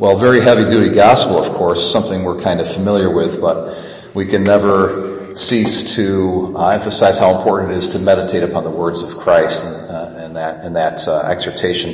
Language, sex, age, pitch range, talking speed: English, male, 40-59, 90-120 Hz, 190 wpm